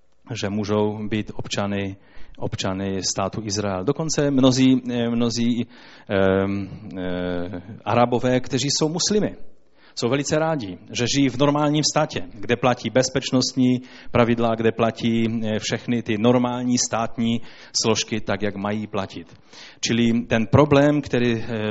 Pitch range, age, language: 105-135 Hz, 30-49, Czech